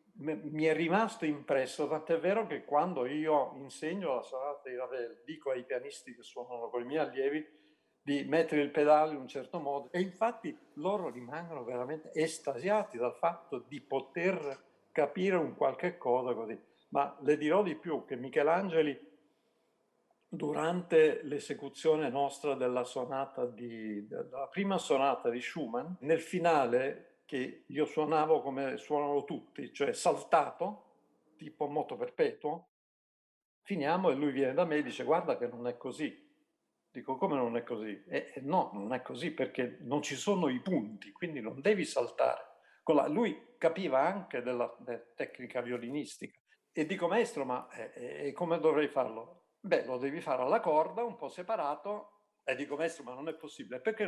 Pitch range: 135-175 Hz